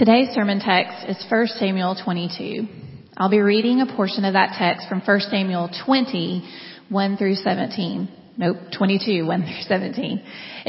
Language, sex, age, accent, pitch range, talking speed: English, female, 30-49, American, 185-225 Hz, 130 wpm